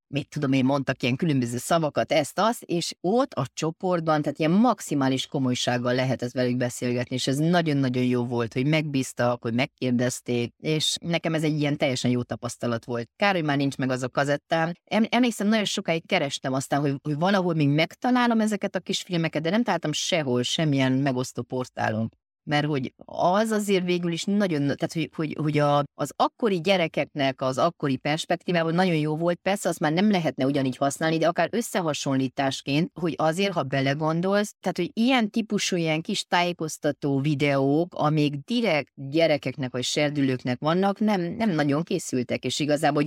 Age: 30-49